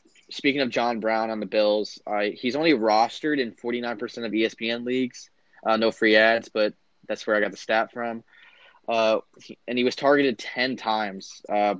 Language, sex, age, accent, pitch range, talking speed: English, male, 20-39, American, 105-115 Hz, 190 wpm